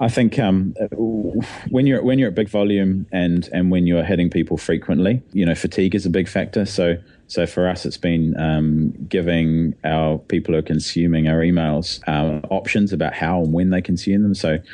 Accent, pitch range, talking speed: Australian, 80-90 Hz, 200 wpm